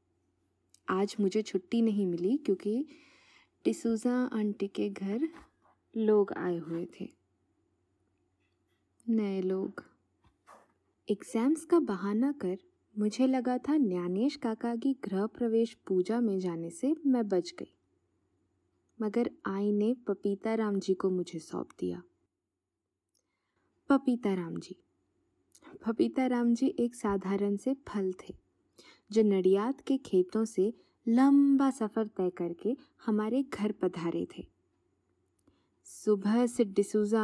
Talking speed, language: 115 wpm, Hindi